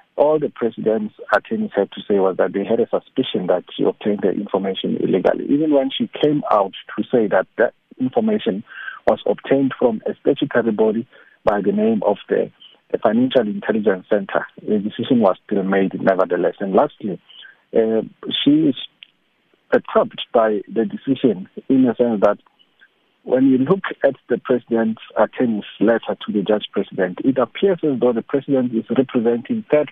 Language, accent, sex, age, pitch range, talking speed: English, South African, male, 50-69, 115-165 Hz, 160 wpm